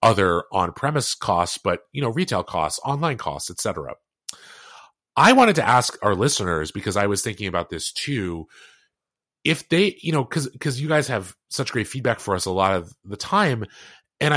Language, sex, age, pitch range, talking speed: English, male, 30-49, 95-140 Hz, 190 wpm